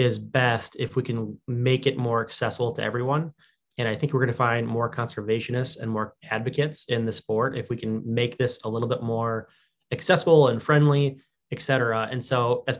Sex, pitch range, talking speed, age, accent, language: male, 115-140 Hz, 200 wpm, 20-39, American, English